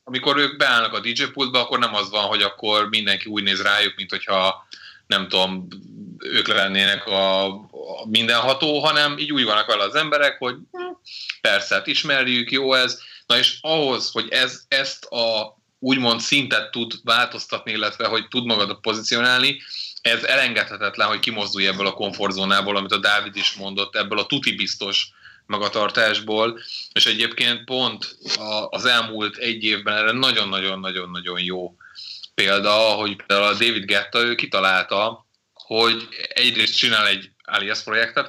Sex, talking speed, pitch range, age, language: male, 145 wpm, 100-125 Hz, 30-49, Hungarian